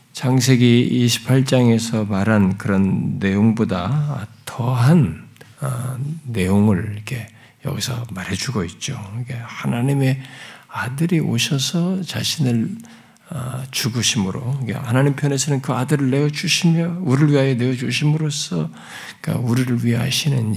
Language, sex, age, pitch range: Korean, male, 50-69, 120-155 Hz